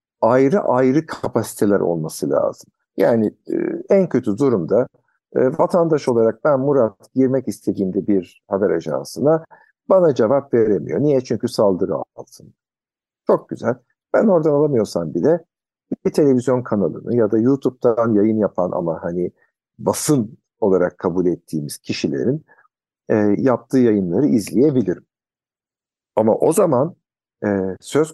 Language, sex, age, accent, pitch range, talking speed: Turkish, male, 60-79, native, 105-135 Hz, 120 wpm